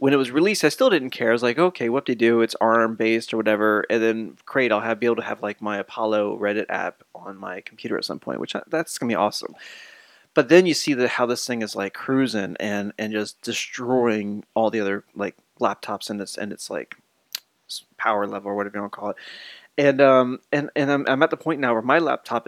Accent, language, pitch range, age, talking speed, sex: American, English, 110-145 Hz, 20-39, 245 wpm, male